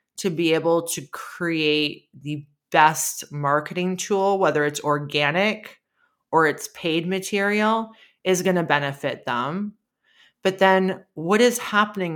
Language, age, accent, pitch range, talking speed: English, 30-49, American, 160-195 Hz, 130 wpm